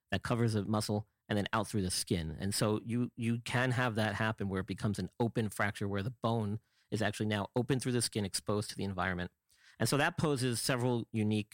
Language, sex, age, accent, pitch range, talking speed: English, male, 40-59, American, 100-120 Hz, 230 wpm